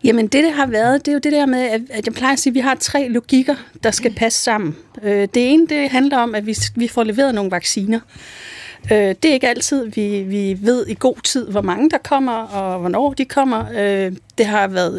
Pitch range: 205-260 Hz